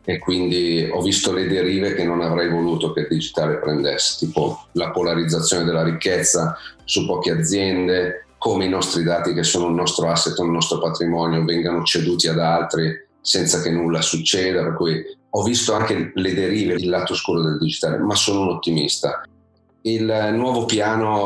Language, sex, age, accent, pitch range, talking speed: Italian, male, 40-59, native, 85-95 Hz, 170 wpm